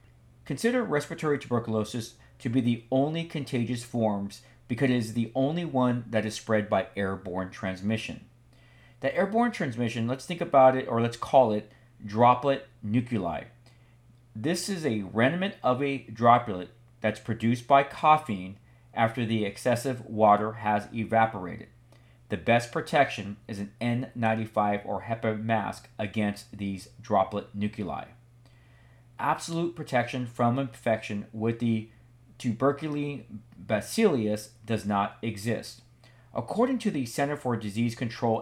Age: 40-59